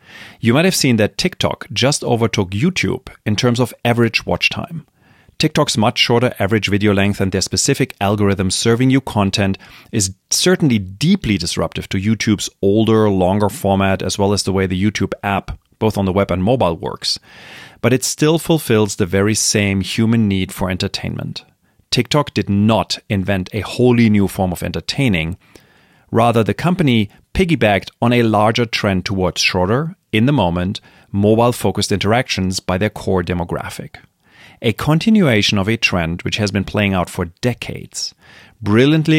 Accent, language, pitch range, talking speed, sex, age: German, English, 95-120 Hz, 160 wpm, male, 30-49